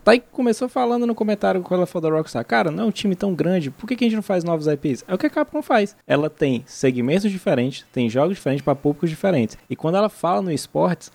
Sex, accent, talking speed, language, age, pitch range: male, Brazilian, 265 wpm, Portuguese, 20-39, 130-175 Hz